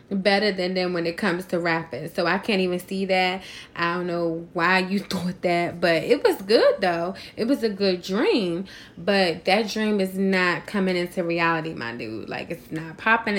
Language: English